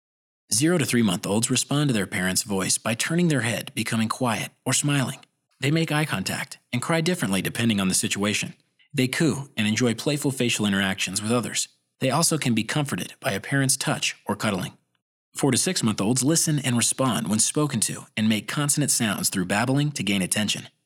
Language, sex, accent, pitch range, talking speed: English, male, American, 110-150 Hz, 175 wpm